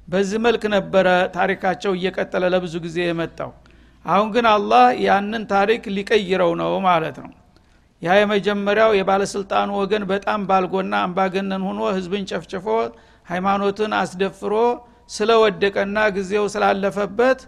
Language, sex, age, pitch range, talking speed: Amharic, male, 60-79, 185-215 Hz, 110 wpm